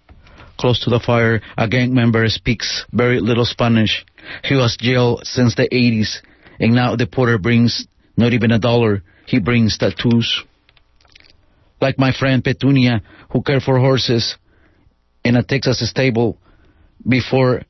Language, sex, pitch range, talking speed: English, male, 115-130 Hz, 140 wpm